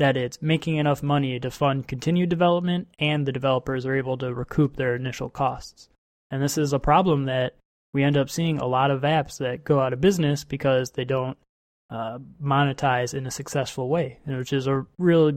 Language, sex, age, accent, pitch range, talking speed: English, male, 20-39, American, 130-155 Hz, 200 wpm